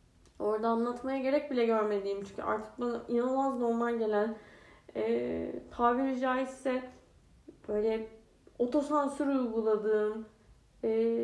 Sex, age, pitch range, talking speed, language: female, 10-29, 205-245 Hz, 95 wpm, Turkish